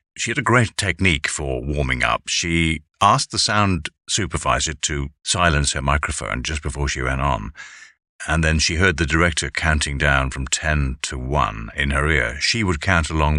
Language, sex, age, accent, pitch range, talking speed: English, male, 50-69, British, 70-95 Hz, 185 wpm